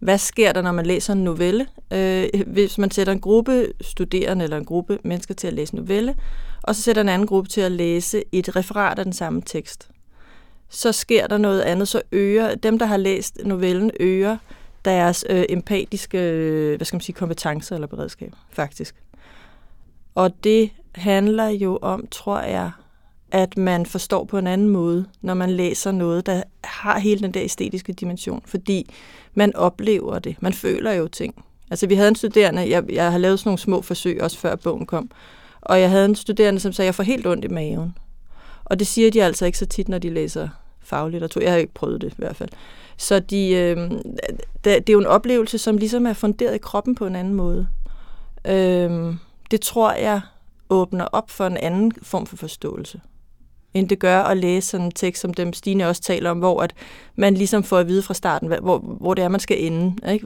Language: English